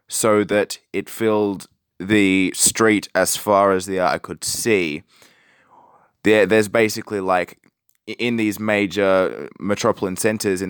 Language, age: English, 20-39